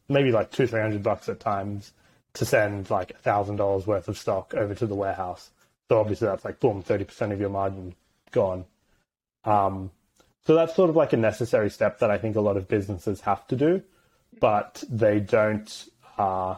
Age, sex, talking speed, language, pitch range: 20-39, male, 190 wpm, English, 100-115 Hz